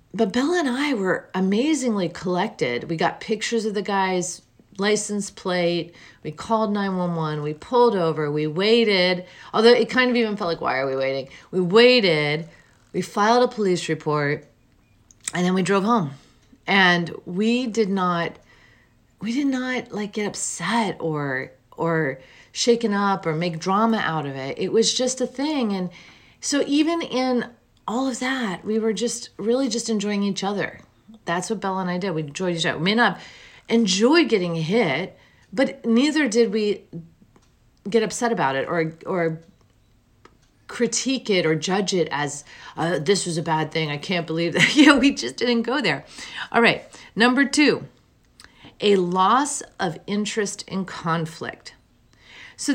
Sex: female